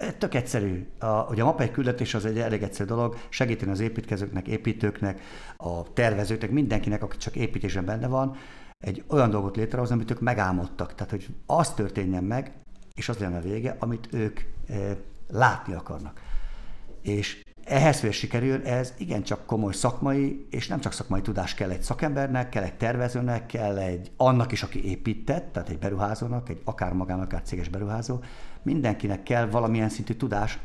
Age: 50-69